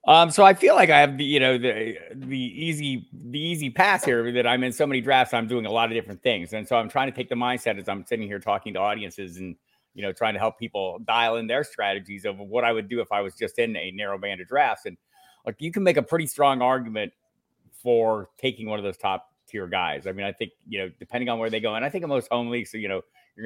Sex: male